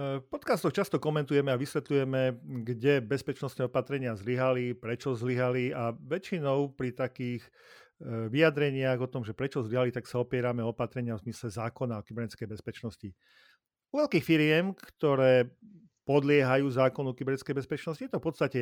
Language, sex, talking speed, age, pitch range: Slovak, male, 140 wpm, 40-59, 120-140 Hz